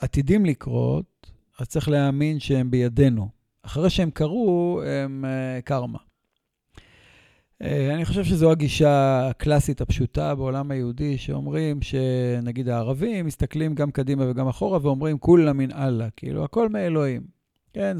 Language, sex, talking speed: Hebrew, male, 125 wpm